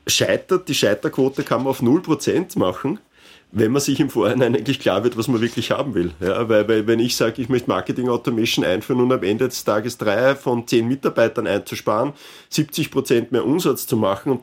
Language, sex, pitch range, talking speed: German, male, 110-130 Hz, 195 wpm